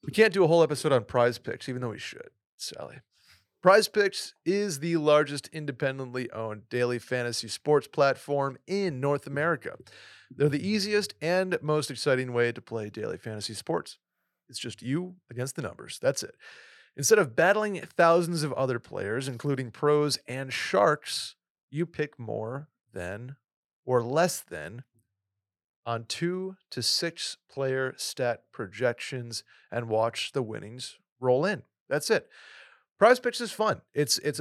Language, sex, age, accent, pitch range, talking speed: English, male, 30-49, American, 120-165 Hz, 150 wpm